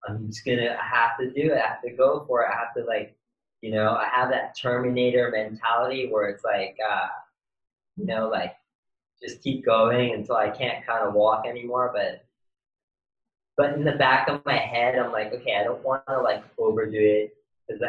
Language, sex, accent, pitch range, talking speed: English, male, American, 110-130 Hz, 200 wpm